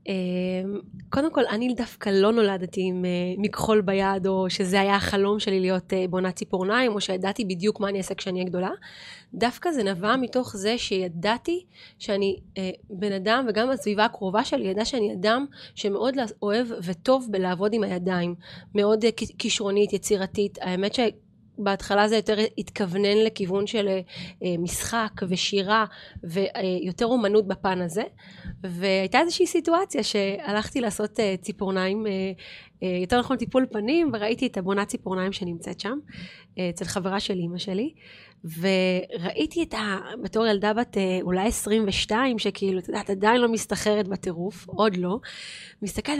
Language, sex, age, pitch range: Hebrew, female, 30-49, 190-230 Hz